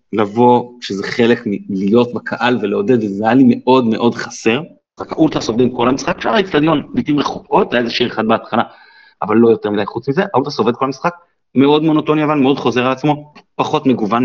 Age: 30-49